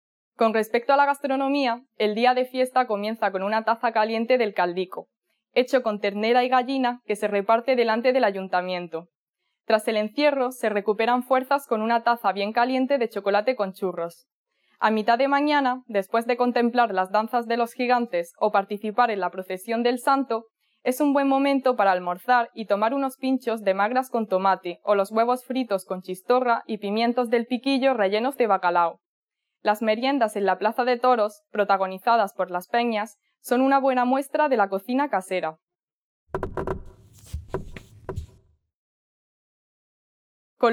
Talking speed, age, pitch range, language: 160 wpm, 20-39, 195-250 Hz, English